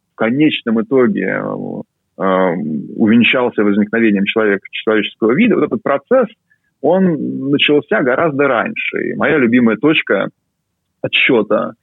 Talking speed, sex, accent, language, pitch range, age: 110 wpm, male, native, Russian, 115-190 Hz, 20-39